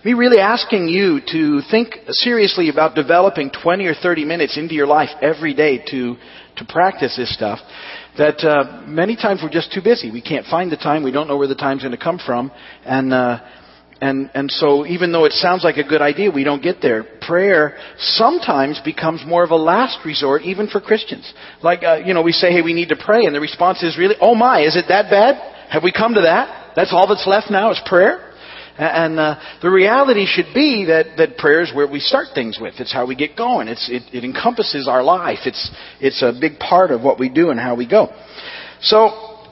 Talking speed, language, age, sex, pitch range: 220 wpm, English, 40-59, male, 145-190 Hz